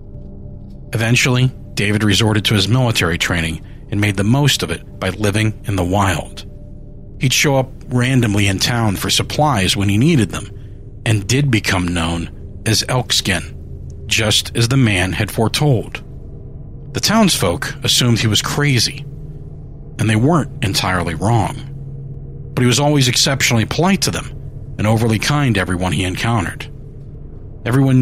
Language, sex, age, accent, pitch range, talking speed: English, male, 40-59, American, 95-130 Hz, 150 wpm